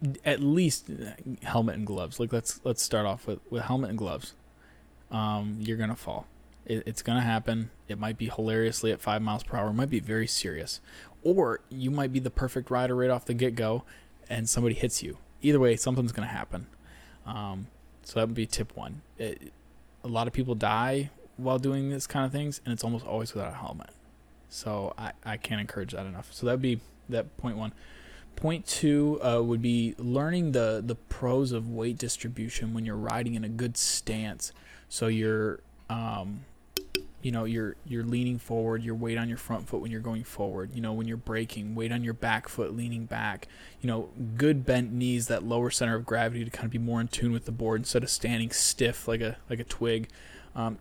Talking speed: 215 wpm